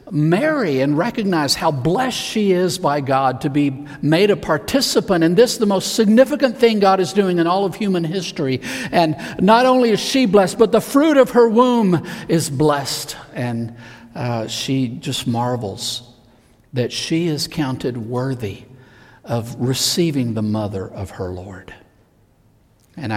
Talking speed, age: 155 wpm, 50-69